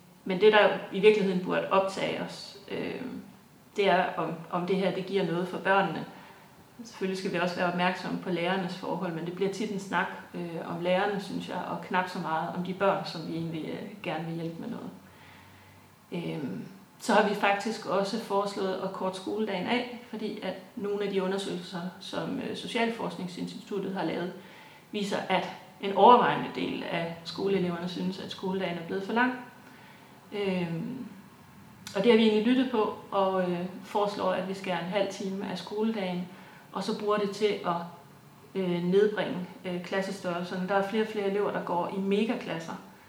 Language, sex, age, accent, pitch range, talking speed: Danish, female, 30-49, native, 180-210 Hz, 175 wpm